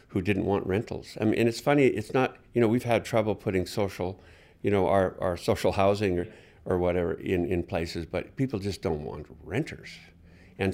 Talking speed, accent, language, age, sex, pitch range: 205 wpm, American, English, 50-69, male, 90-110 Hz